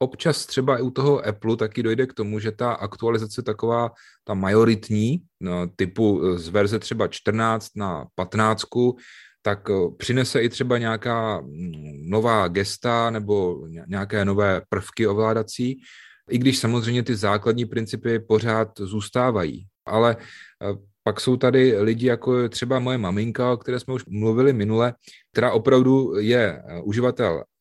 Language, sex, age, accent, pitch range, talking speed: Czech, male, 30-49, native, 100-115 Hz, 140 wpm